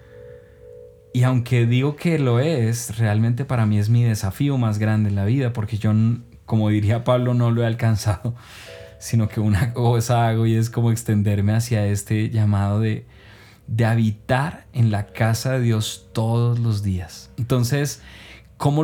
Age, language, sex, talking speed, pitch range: 20-39, Spanish, male, 160 wpm, 110-145 Hz